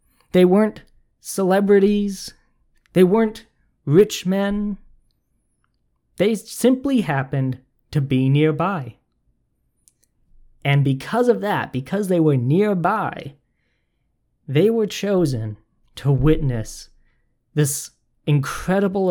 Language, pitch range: English, 125-175 Hz